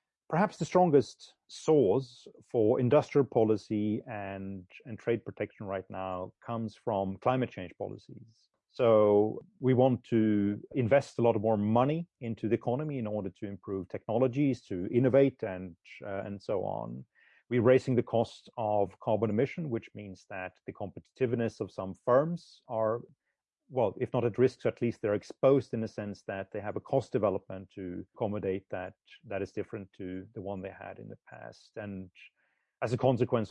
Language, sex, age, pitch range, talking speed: English, male, 30-49, 95-125 Hz, 170 wpm